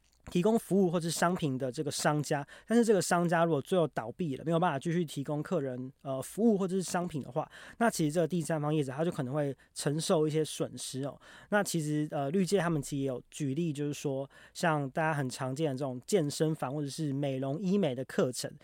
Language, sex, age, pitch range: Chinese, male, 20-39, 140-175 Hz